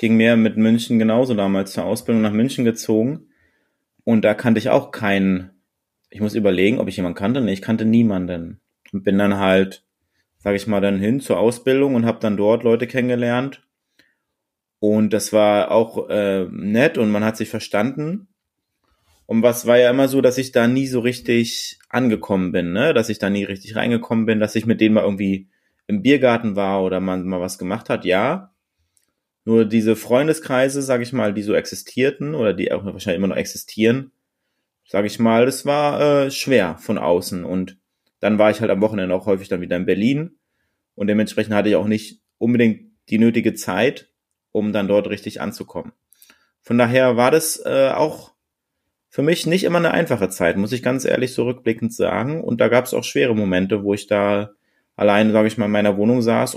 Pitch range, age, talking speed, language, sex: 100-120 Hz, 30-49, 195 wpm, German, male